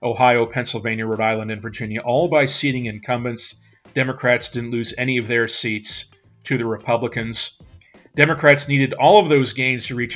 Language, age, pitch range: English, 40-59, 115-140 Hz